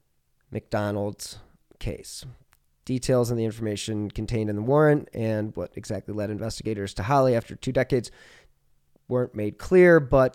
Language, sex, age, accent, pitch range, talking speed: English, male, 20-39, American, 100-125 Hz, 140 wpm